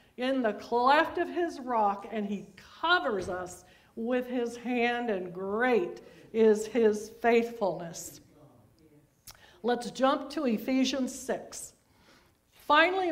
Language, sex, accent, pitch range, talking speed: English, female, American, 210-290 Hz, 110 wpm